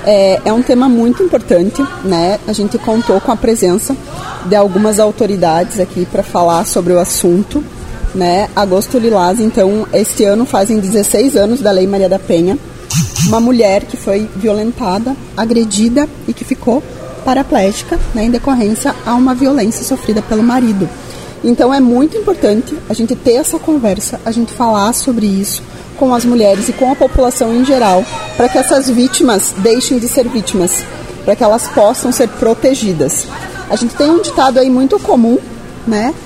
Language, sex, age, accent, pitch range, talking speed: Portuguese, female, 20-39, Brazilian, 205-260 Hz, 165 wpm